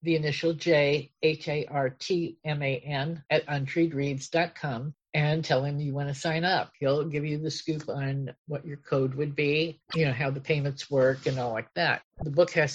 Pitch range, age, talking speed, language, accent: 135-160 Hz, 50-69, 175 wpm, English, American